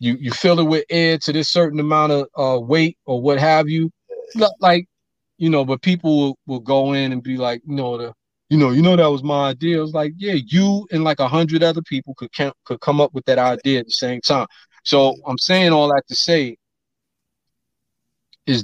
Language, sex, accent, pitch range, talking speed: English, male, American, 120-150 Hz, 230 wpm